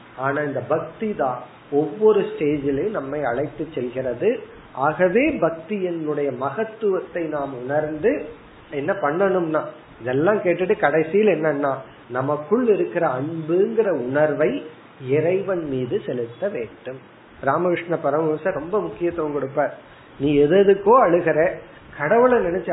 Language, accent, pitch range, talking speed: Tamil, native, 135-175 Hz, 55 wpm